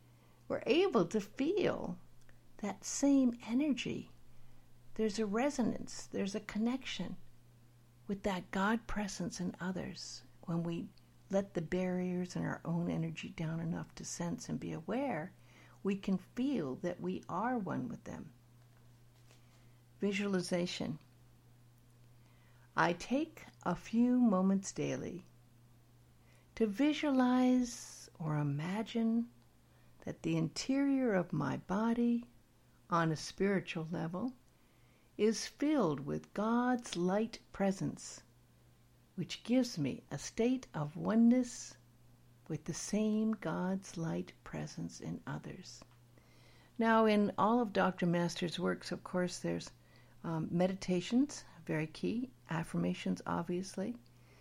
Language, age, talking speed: English, 60-79, 110 wpm